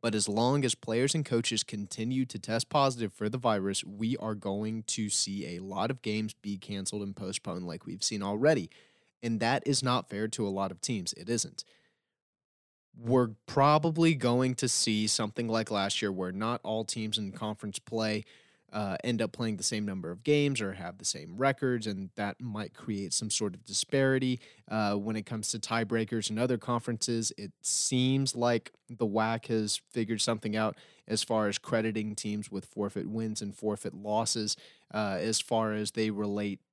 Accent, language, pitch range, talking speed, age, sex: American, English, 105-120 Hz, 190 wpm, 30-49, male